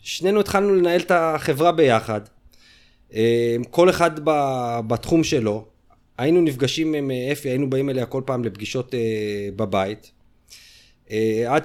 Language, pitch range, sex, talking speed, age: Hebrew, 105-135 Hz, male, 115 wpm, 30-49